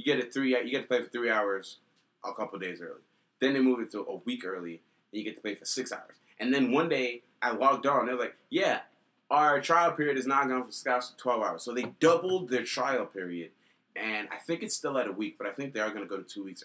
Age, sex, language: 30-49, male, English